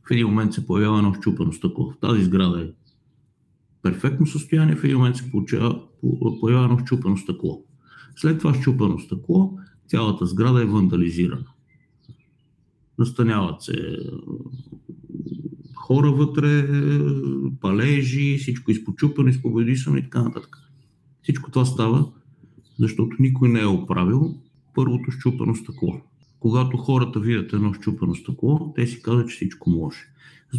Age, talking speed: 50-69, 125 wpm